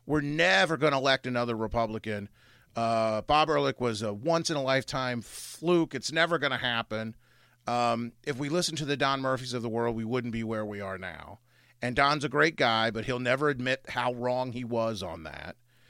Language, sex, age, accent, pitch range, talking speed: English, male, 40-59, American, 115-145 Hz, 210 wpm